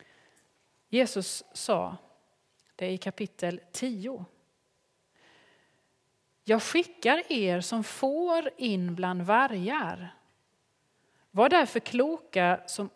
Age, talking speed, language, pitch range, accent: 30-49, 90 wpm, Swedish, 180-250 Hz, native